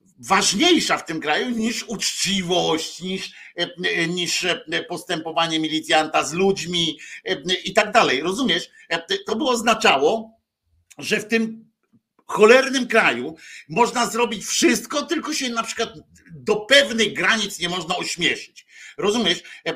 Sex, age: male, 50-69